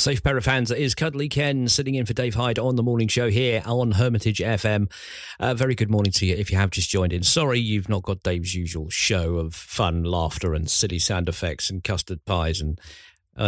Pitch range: 90-125 Hz